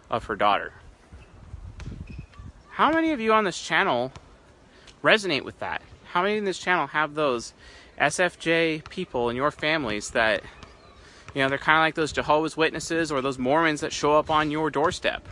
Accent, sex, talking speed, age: American, male, 170 wpm, 30-49